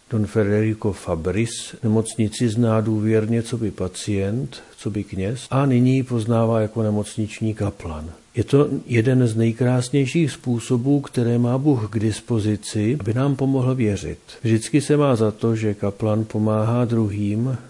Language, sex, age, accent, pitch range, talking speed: Czech, male, 50-69, native, 110-125 Hz, 145 wpm